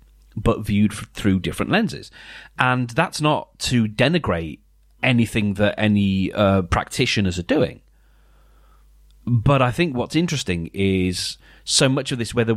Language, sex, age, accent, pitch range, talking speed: English, male, 30-49, British, 95-125 Hz, 135 wpm